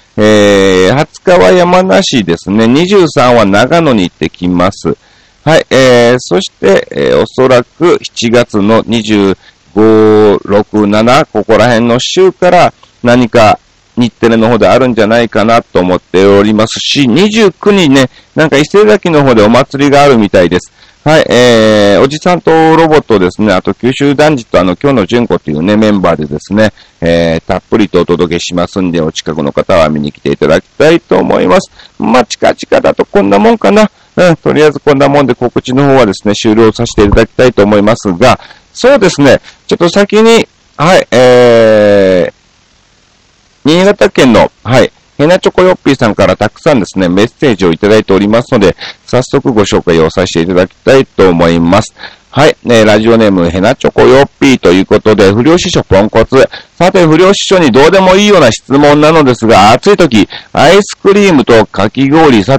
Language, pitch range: Japanese, 100-145 Hz